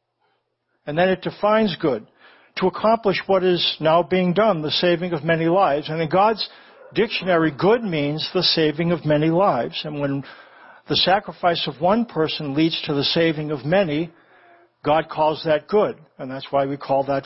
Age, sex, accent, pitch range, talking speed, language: 60-79, male, American, 145-180 Hz, 175 wpm, English